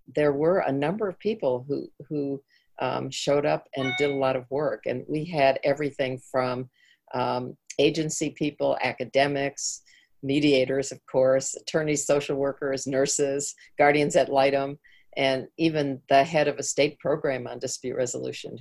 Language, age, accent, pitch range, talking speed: English, 50-69, American, 130-145 Hz, 150 wpm